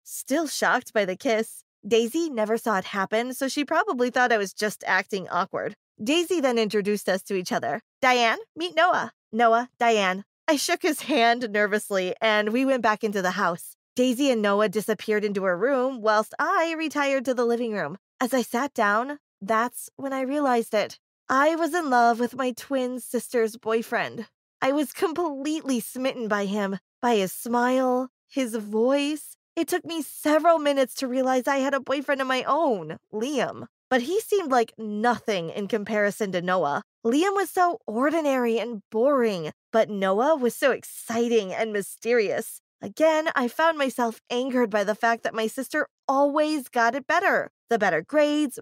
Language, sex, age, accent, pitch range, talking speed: English, female, 20-39, American, 215-285 Hz, 175 wpm